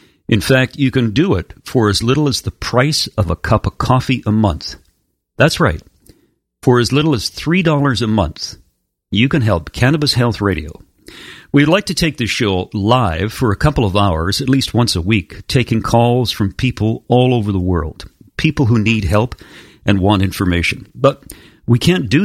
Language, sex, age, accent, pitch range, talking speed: English, male, 50-69, American, 95-130 Hz, 190 wpm